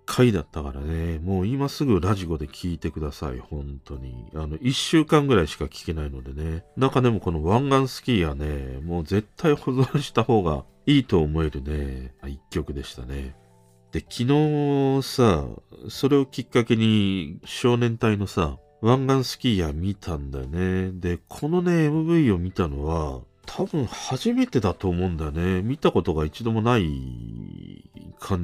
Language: Japanese